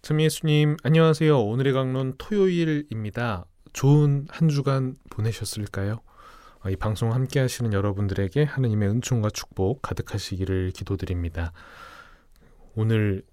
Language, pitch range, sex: Korean, 95-130 Hz, male